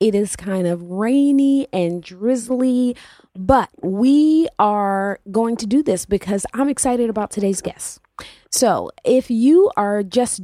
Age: 30-49